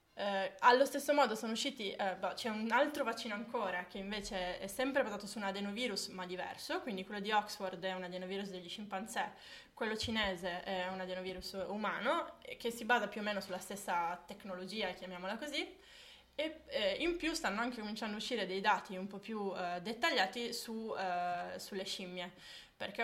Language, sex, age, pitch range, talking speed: Italian, female, 20-39, 190-225 Hz, 180 wpm